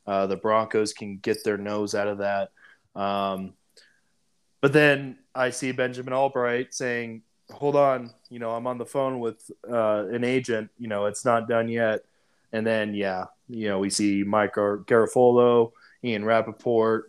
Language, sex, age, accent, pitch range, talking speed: English, male, 20-39, American, 105-130 Hz, 170 wpm